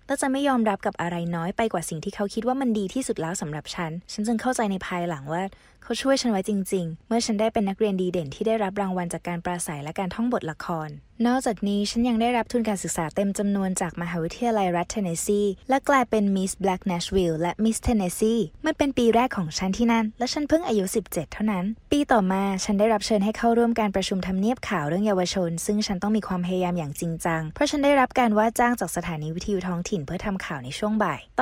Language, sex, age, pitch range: Thai, female, 20-39, 175-230 Hz